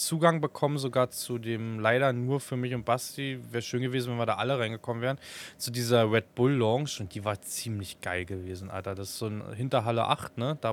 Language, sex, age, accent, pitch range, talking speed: German, male, 20-39, German, 105-135 Hz, 225 wpm